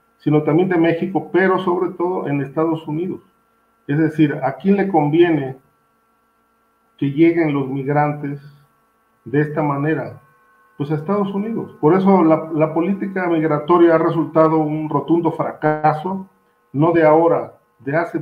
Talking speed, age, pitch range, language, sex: 140 wpm, 50-69, 145-170 Hz, Spanish, male